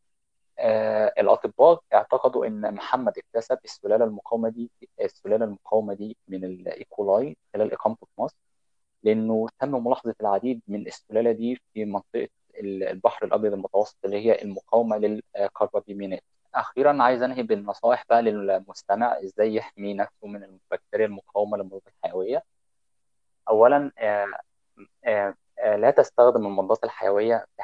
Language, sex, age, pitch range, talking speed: Arabic, male, 20-39, 100-120 Hz, 120 wpm